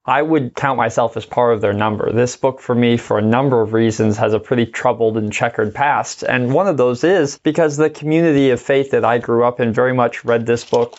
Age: 20-39